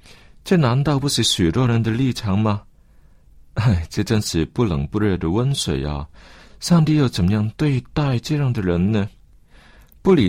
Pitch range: 90-145 Hz